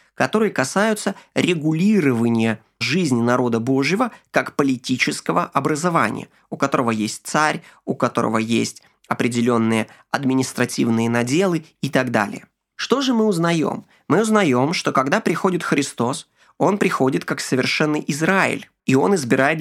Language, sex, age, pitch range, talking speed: Ukrainian, male, 20-39, 130-190 Hz, 120 wpm